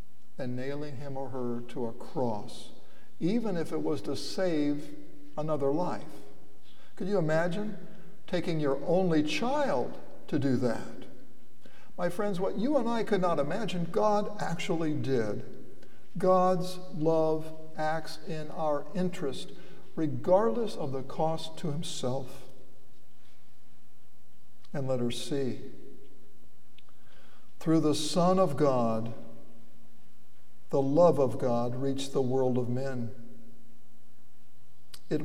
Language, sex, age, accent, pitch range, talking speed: English, male, 60-79, American, 135-190 Hz, 115 wpm